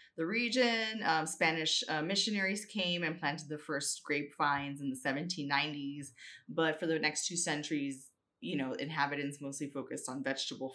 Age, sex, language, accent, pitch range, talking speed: 20-39, female, English, American, 145-175 Hz, 155 wpm